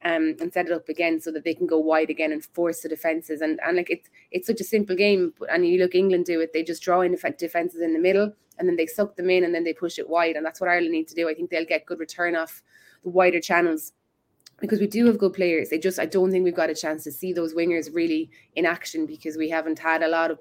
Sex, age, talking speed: female, 20-39, 290 wpm